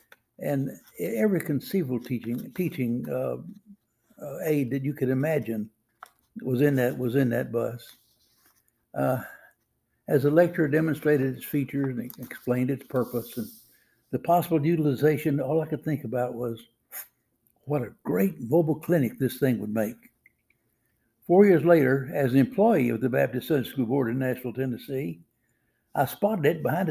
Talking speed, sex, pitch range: 150 wpm, male, 120-155 Hz